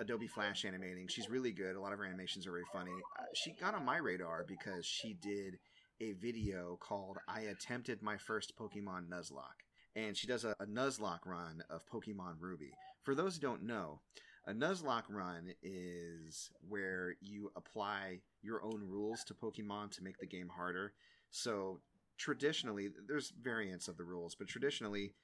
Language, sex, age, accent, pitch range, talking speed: English, male, 30-49, American, 90-110 Hz, 170 wpm